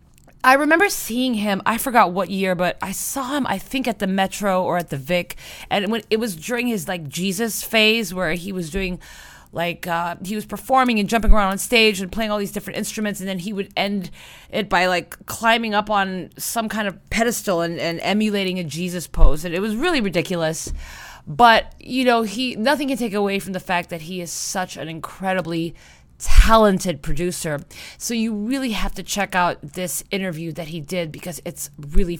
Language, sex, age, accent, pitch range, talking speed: English, female, 30-49, American, 175-220 Hz, 205 wpm